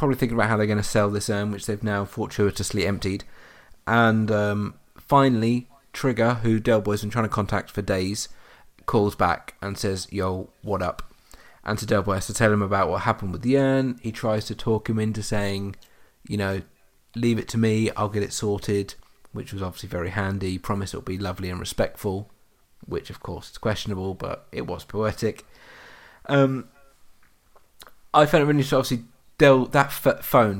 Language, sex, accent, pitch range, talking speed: English, male, British, 95-110 Hz, 185 wpm